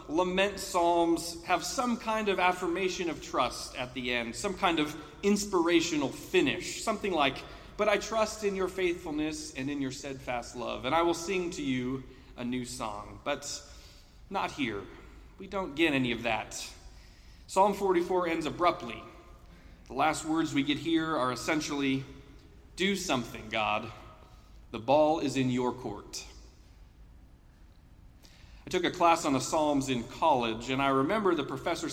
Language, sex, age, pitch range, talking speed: English, male, 30-49, 120-180 Hz, 155 wpm